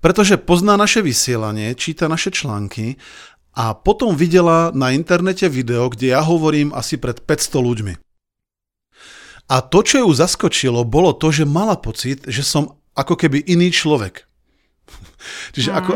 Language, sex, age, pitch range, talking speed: Slovak, male, 40-59, 120-165 Hz, 145 wpm